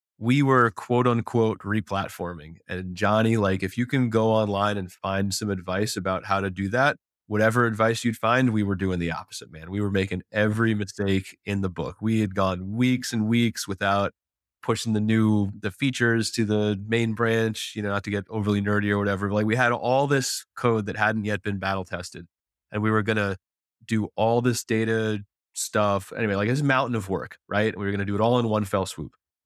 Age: 30-49